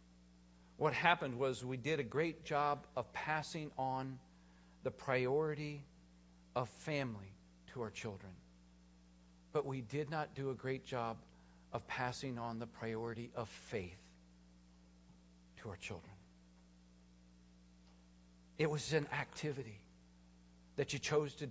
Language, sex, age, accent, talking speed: English, male, 50-69, American, 125 wpm